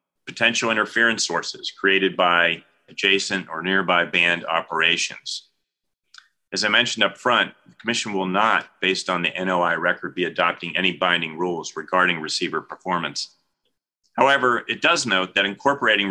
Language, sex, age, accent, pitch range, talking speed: English, male, 40-59, American, 90-115 Hz, 140 wpm